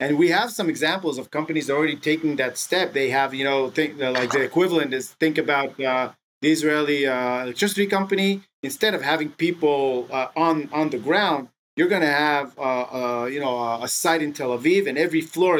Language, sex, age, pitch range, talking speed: English, male, 30-49, 135-170 Hz, 210 wpm